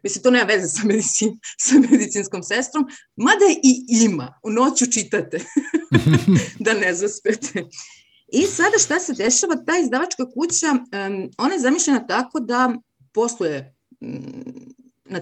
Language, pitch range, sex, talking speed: Croatian, 180-265 Hz, female, 140 wpm